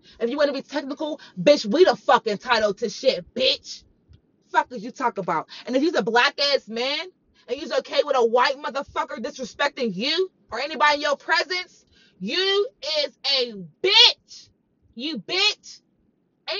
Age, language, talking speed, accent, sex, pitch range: 20-39, English, 165 wpm, American, female, 240-335 Hz